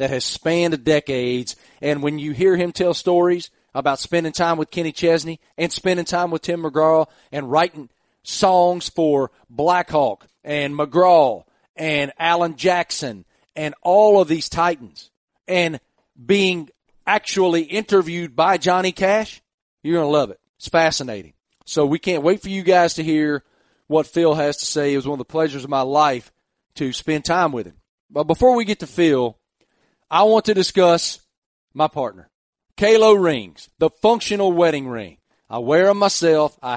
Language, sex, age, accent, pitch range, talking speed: English, male, 40-59, American, 150-185 Hz, 170 wpm